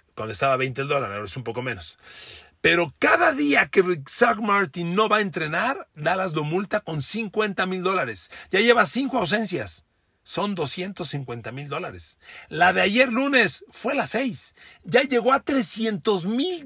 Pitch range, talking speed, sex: 140-200 Hz, 165 wpm, male